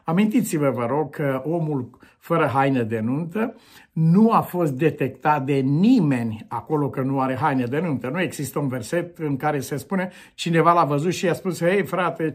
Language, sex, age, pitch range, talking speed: Romanian, male, 50-69, 130-165 Hz, 190 wpm